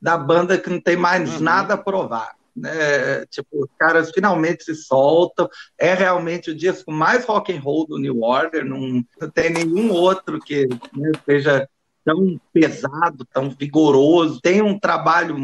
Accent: Brazilian